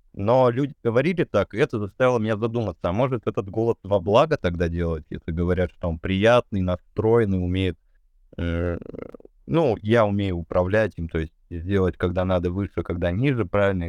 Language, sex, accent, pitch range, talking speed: Russian, male, native, 95-120 Hz, 170 wpm